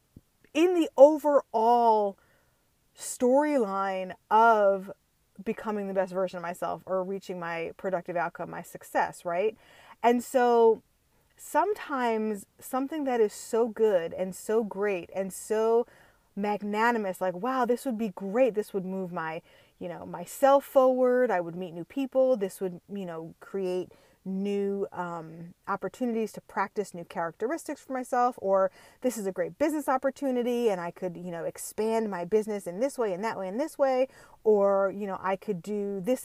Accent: American